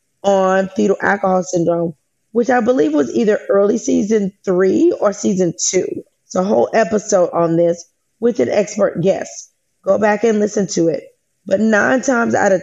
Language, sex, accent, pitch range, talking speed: English, female, American, 180-225 Hz, 170 wpm